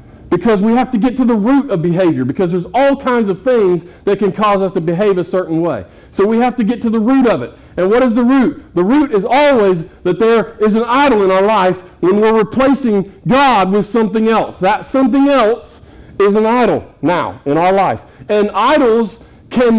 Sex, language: male, English